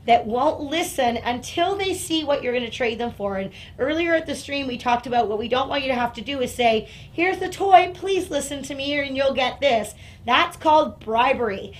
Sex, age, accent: female, 30-49, American